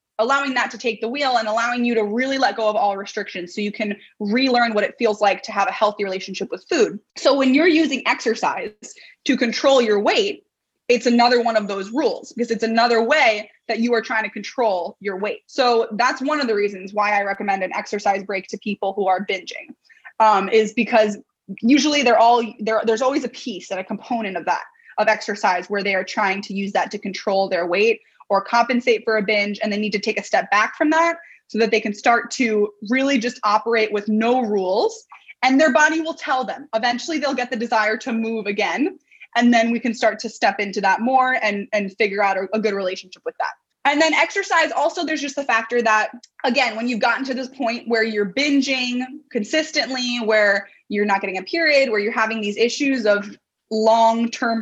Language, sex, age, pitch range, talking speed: Spanish, female, 20-39, 210-260 Hz, 215 wpm